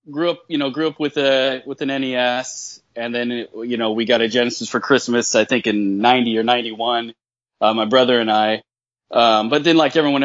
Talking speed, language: 215 wpm, English